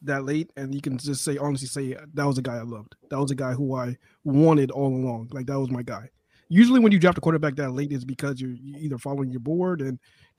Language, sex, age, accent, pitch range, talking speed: English, male, 20-39, American, 130-160 Hz, 260 wpm